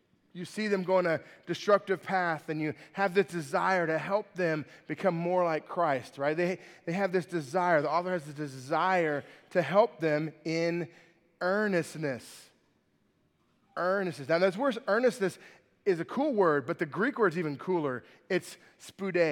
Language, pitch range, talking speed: English, 165-205 Hz, 170 wpm